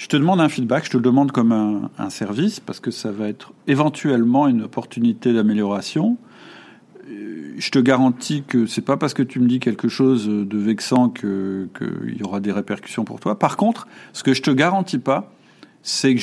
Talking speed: 210 wpm